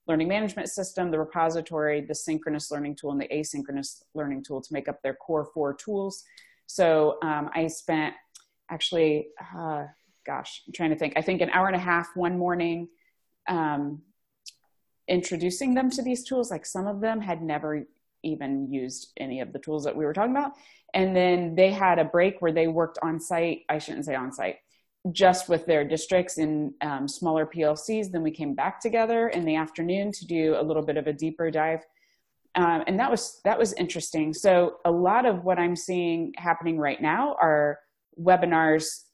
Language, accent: English, American